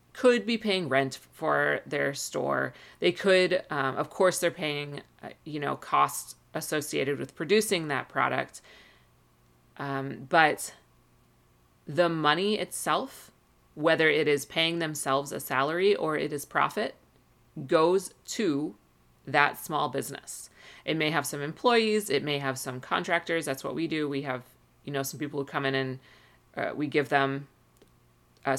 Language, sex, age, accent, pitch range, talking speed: English, female, 30-49, American, 135-170 Hz, 155 wpm